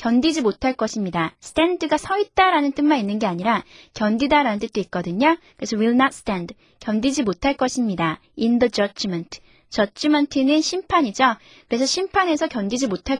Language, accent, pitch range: Korean, native, 215-290 Hz